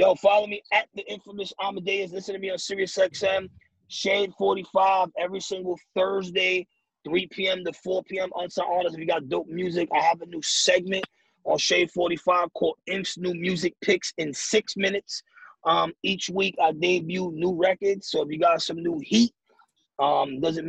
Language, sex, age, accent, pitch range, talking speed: English, male, 30-49, American, 155-205 Hz, 185 wpm